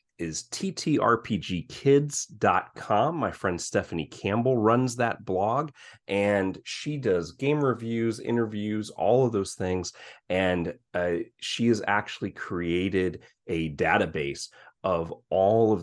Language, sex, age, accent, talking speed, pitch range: English, male, 30-49, American, 115 wpm, 85-115 Hz